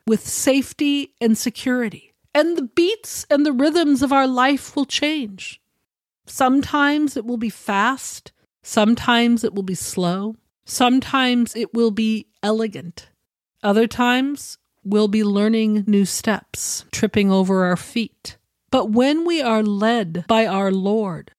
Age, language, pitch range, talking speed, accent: 40-59, English, 195-260 Hz, 135 wpm, American